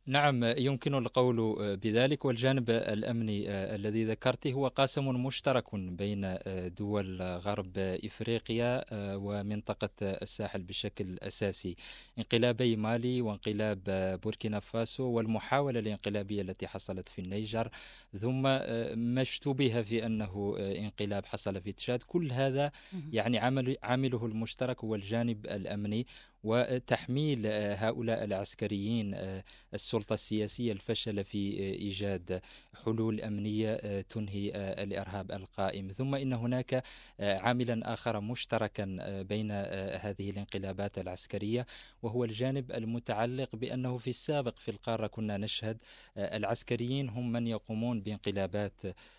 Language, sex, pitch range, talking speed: English, male, 100-120 Hz, 105 wpm